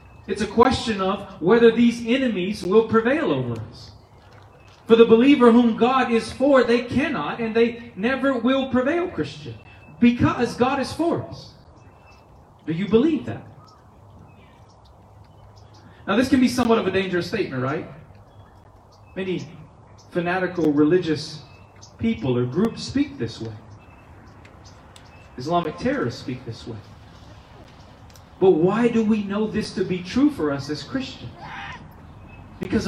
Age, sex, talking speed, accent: 40-59, male, 135 wpm, American